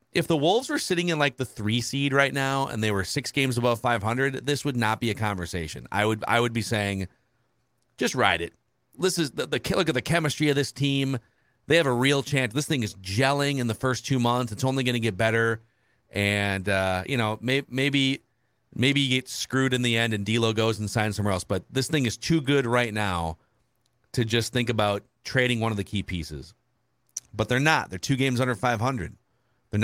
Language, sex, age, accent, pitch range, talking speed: English, male, 40-59, American, 105-140 Hz, 230 wpm